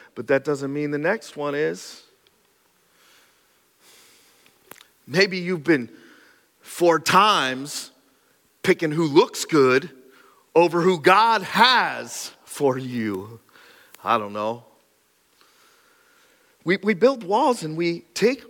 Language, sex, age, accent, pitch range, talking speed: English, male, 40-59, American, 125-210 Hz, 105 wpm